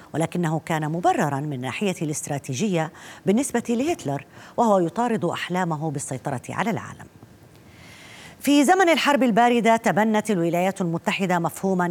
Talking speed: 110 wpm